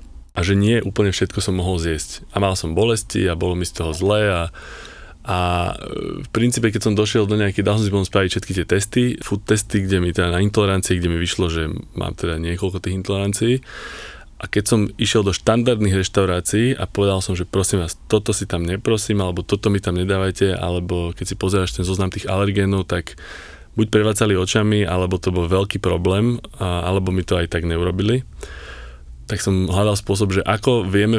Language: Slovak